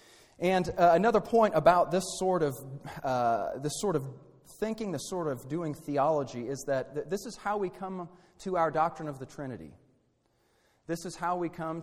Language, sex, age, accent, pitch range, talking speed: English, male, 30-49, American, 130-180 Hz, 190 wpm